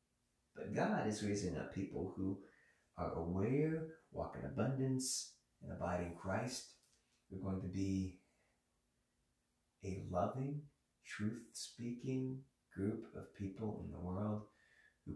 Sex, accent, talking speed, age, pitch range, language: male, American, 125 wpm, 30-49, 90-115 Hz, English